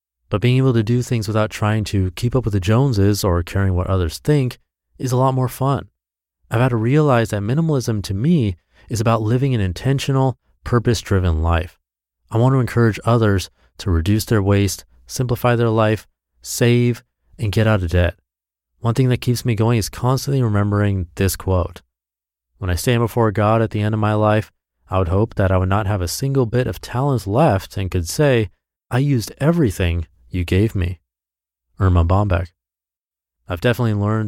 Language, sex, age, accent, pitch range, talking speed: English, male, 30-49, American, 85-120 Hz, 185 wpm